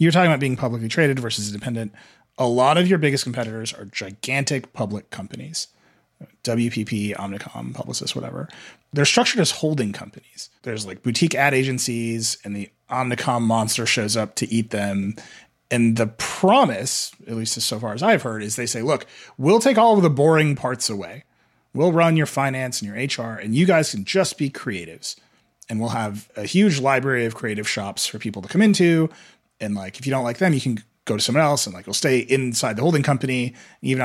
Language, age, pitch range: English, 30-49, 110-155 Hz